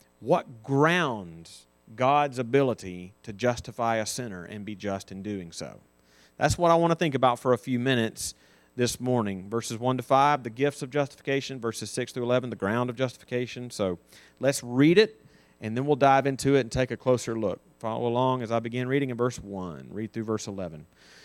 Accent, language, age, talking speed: American, English, 40-59, 200 wpm